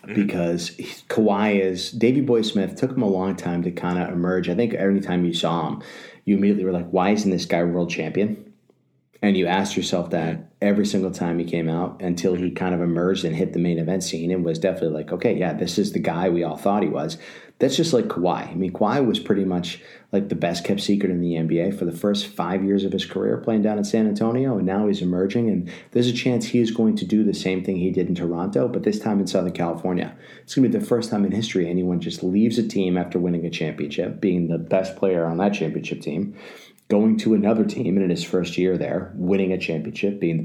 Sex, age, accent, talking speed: male, 30-49, American, 250 wpm